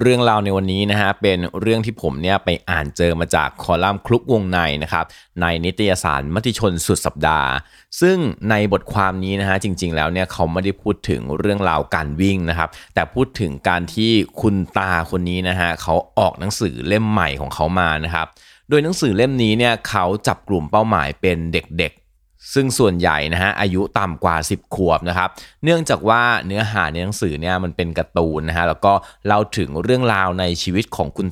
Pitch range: 85-110 Hz